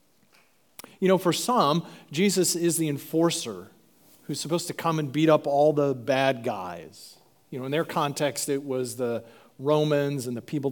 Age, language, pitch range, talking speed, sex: 40-59, English, 135-190 Hz, 175 wpm, male